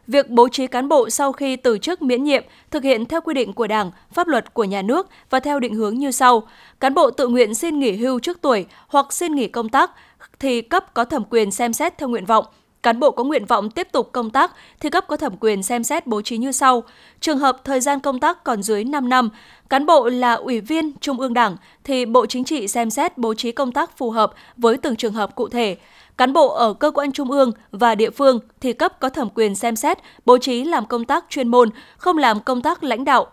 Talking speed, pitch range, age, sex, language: 250 wpm, 230-280 Hz, 20-39, female, Vietnamese